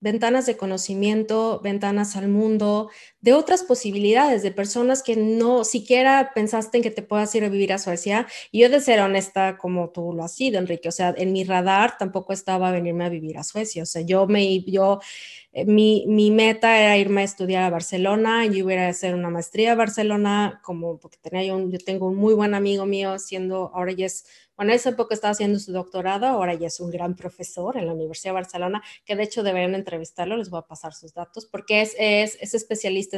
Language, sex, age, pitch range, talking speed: Spanish, female, 20-39, 185-220 Hz, 215 wpm